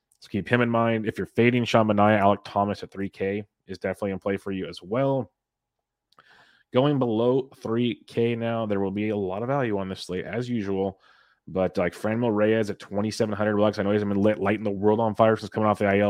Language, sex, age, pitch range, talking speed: English, male, 30-49, 95-110 Hz, 225 wpm